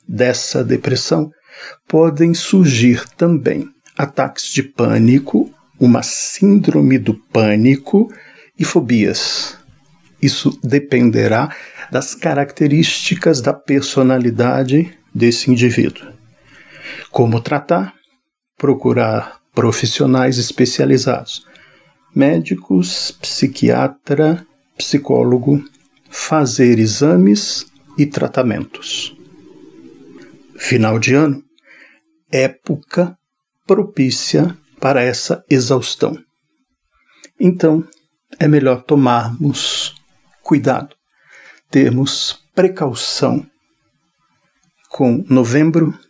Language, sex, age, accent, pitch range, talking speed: Portuguese, male, 50-69, Brazilian, 125-160 Hz, 65 wpm